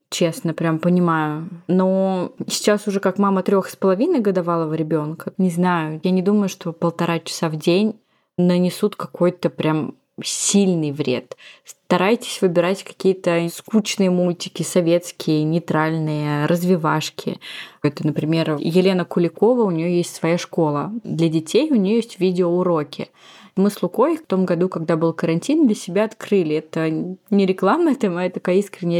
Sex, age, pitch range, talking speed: female, 20-39, 170-200 Hz, 145 wpm